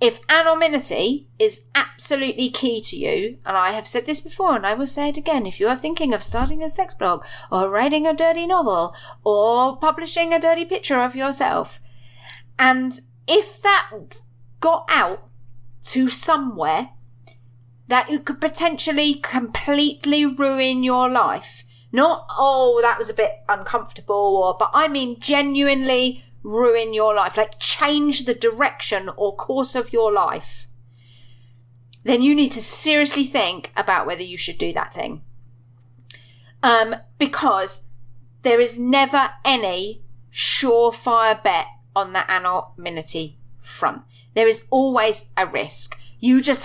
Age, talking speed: 30-49, 145 wpm